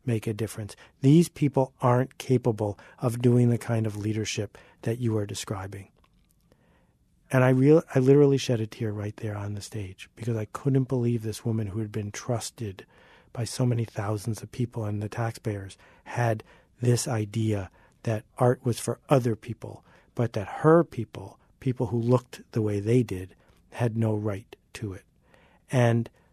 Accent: American